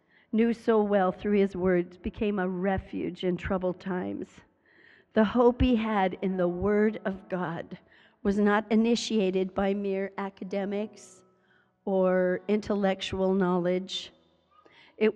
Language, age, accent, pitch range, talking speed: English, 50-69, American, 185-215 Hz, 125 wpm